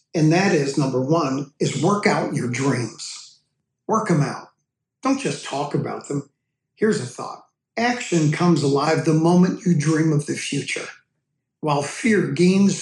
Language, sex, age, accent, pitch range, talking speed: English, male, 60-79, American, 140-180 Hz, 160 wpm